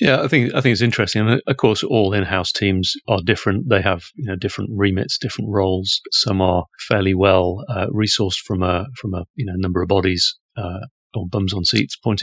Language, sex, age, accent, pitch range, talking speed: English, male, 30-49, British, 90-105 Hz, 225 wpm